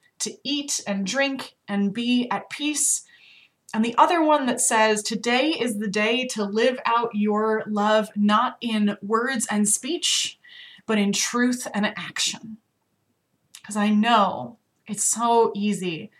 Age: 20-39